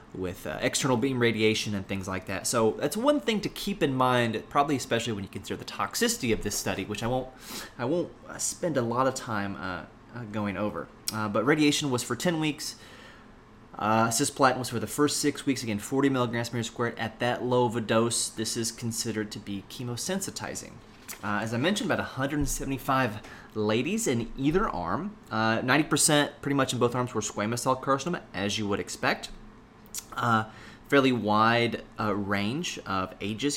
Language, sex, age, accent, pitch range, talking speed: English, male, 20-39, American, 100-130 Hz, 190 wpm